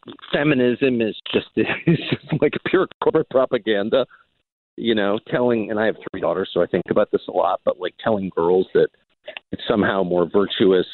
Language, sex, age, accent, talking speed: English, male, 50-69, American, 180 wpm